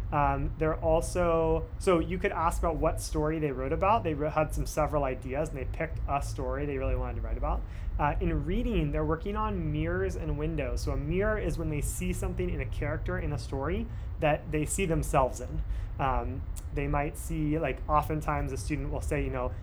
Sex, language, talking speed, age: male, English, 210 wpm, 30-49